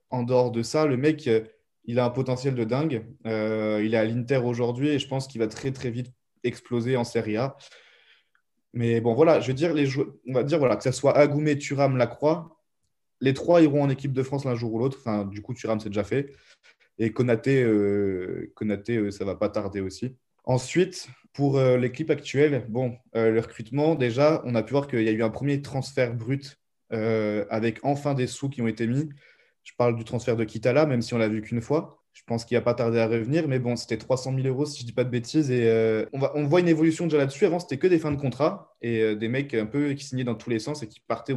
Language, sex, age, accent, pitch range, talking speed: French, male, 20-39, French, 115-140 Hz, 250 wpm